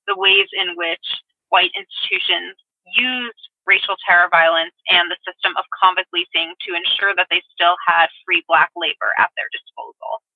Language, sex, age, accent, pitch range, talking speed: English, female, 20-39, American, 175-240 Hz, 160 wpm